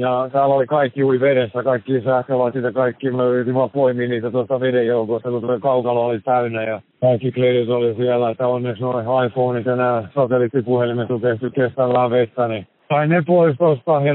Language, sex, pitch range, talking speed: Finnish, male, 125-140 Hz, 175 wpm